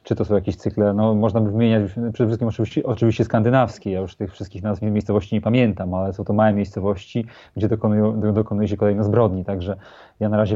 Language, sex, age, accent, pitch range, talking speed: Polish, male, 30-49, native, 100-115 Hz, 215 wpm